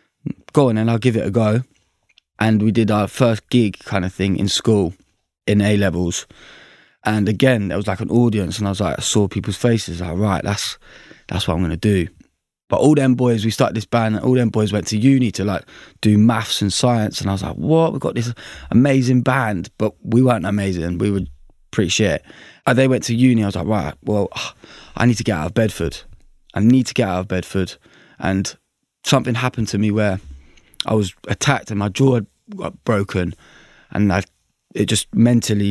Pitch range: 95-115 Hz